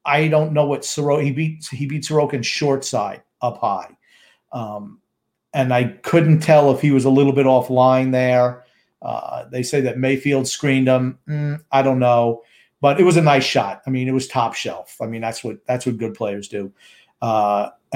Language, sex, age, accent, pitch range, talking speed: English, male, 40-59, American, 130-210 Hz, 205 wpm